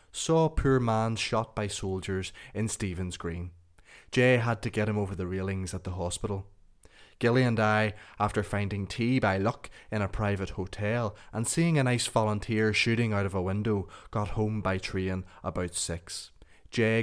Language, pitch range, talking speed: English, 95-110 Hz, 175 wpm